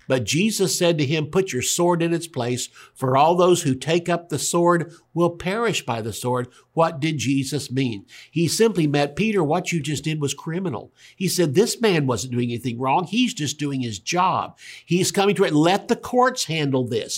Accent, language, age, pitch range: American, English, 60-79, 135-190 Hz